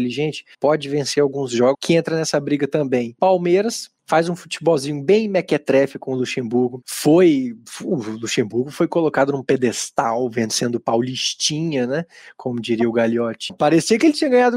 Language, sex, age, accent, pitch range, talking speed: Portuguese, male, 20-39, Brazilian, 130-165 Hz, 160 wpm